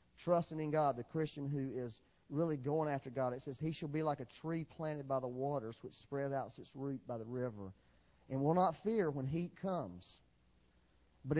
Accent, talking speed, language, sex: American, 205 wpm, English, male